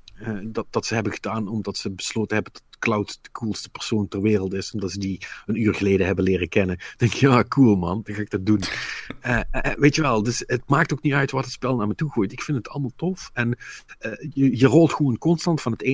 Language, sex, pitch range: Dutch, male, 100-125 Hz